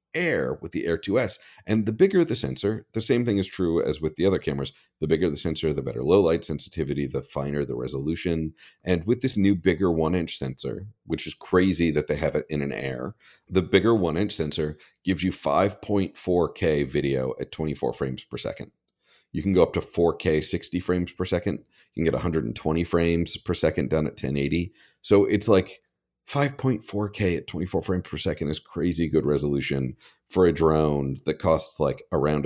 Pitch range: 70-95 Hz